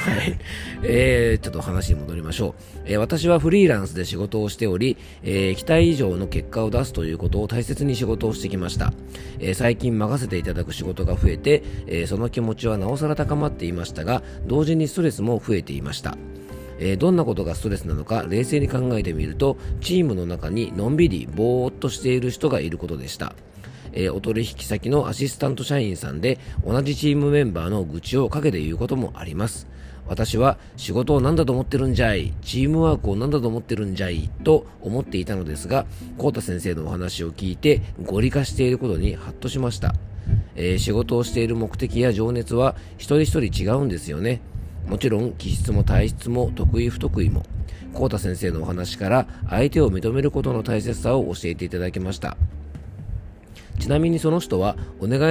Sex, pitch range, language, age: male, 90-125 Hz, Japanese, 40-59